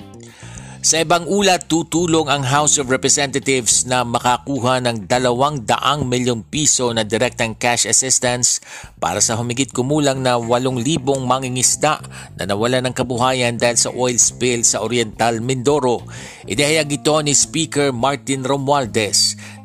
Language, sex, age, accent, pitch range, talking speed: Filipino, male, 50-69, native, 120-140 Hz, 130 wpm